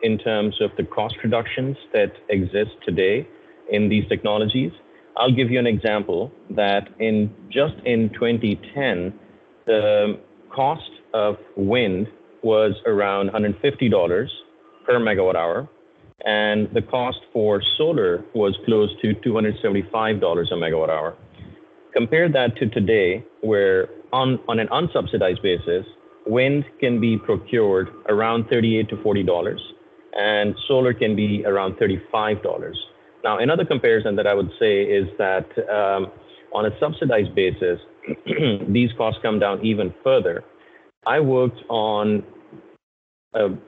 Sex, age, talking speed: male, 30-49, 125 wpm